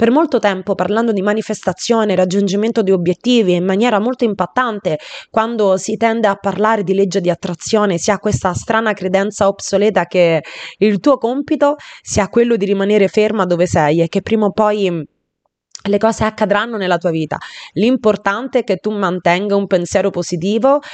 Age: 20-39